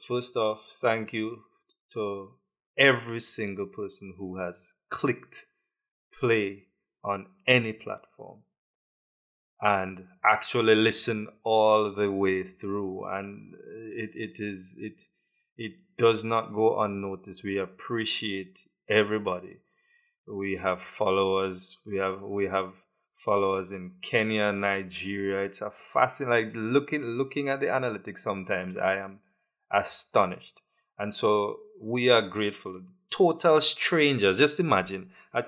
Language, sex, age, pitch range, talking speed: English, male, 20-39, 95-115 Hz, 115 wpm